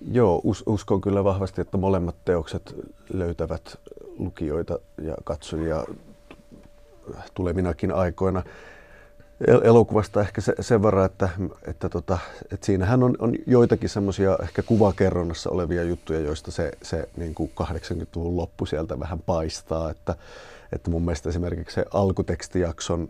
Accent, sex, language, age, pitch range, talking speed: native, male, Finnish, 30-49, 80-95 Hz, 125 wpm